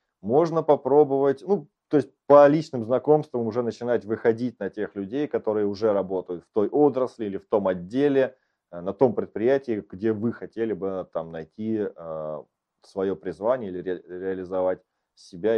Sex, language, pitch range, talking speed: male, Russian, 95-140 Hz, 145 wpm